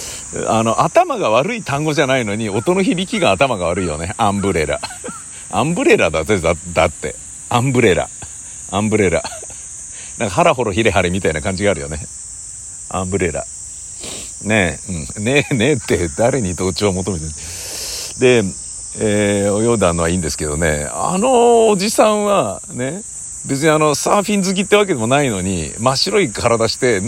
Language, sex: Japanese, male